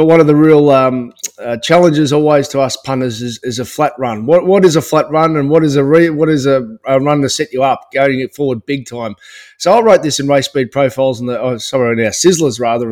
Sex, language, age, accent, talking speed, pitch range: male, English, 30-49, Australian, 270 wpm, 135-170 Hz